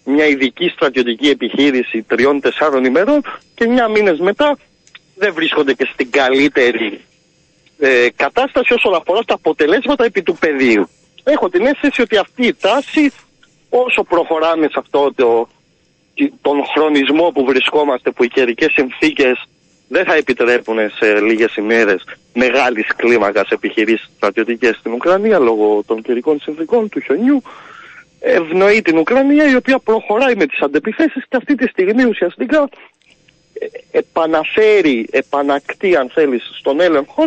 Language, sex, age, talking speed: Greek, male, 30-49, 130 wpm